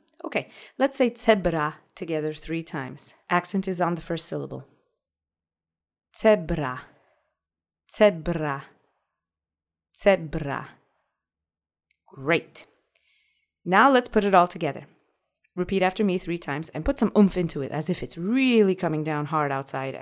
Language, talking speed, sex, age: English, 125 wpm, female, 20-39